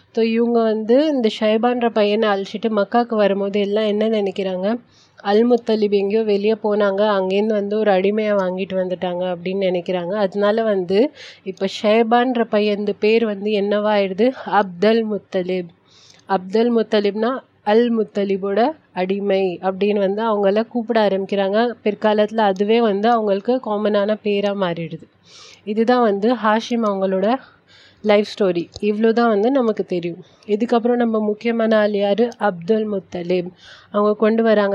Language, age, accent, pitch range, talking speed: Tamil, 30-49, native, 195-225 Hz, 130 wpm